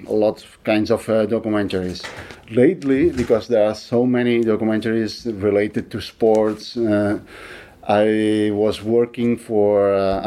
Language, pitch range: English, 100-115 Hz